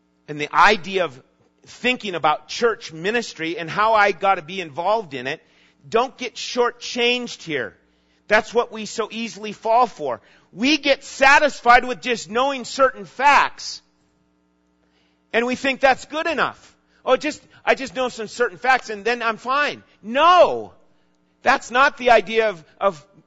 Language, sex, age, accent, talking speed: English, male, 40-59, American, 155 wpm